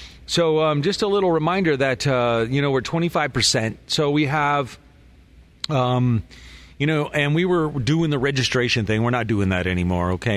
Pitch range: 110-150 Hz